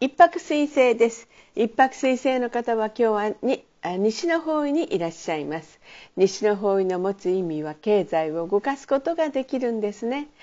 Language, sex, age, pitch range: Japanese, female, 50-69, 205-275 Hz